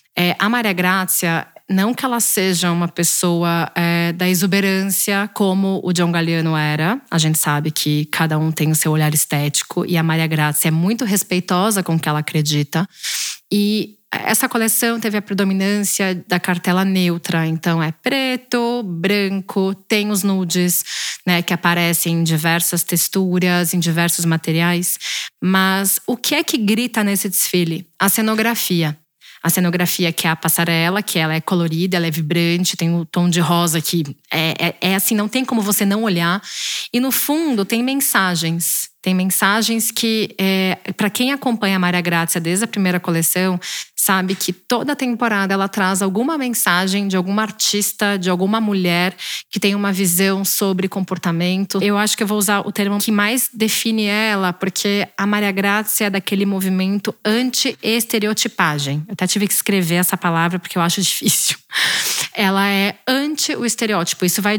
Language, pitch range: Portuguese, 170-210 Hz